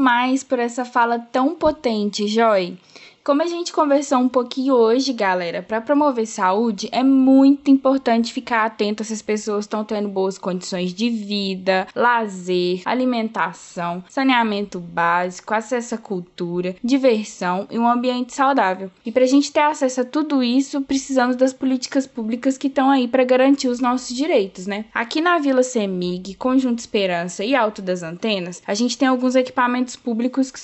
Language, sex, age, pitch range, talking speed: Portuguese, female, 10-29, 205-260 Hz, 165 wpm